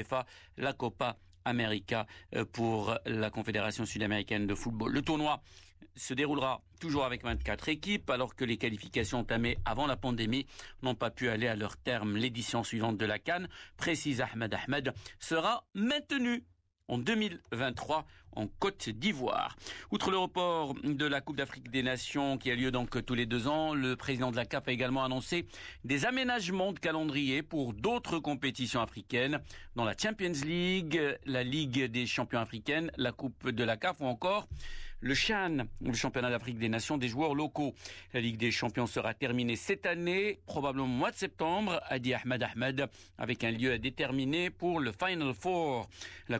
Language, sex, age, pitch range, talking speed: Arabic, male, 50-69, 115-150 Hz, 170 wpm